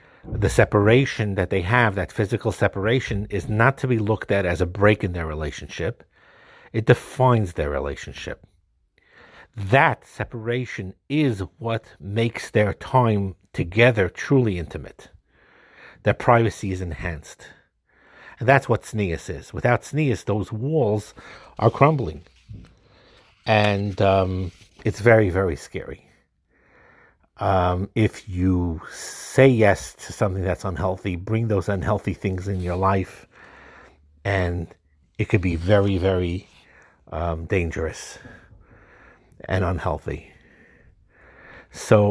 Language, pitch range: English, 90-110 Hz